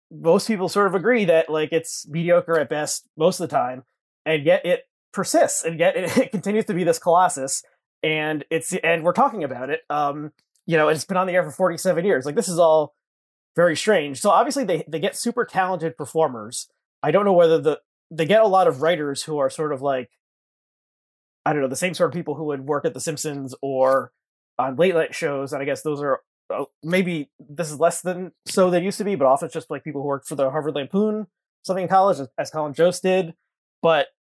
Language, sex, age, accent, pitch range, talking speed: English, male, 20-39, American, 150-190 Hz, 230 wpm